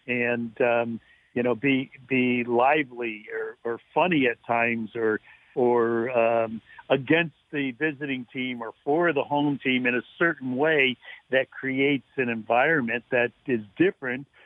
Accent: American